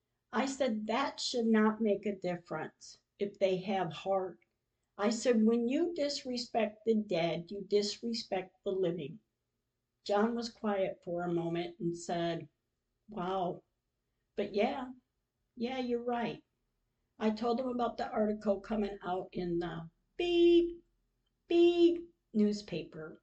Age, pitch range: 50-69, 180-235 Hz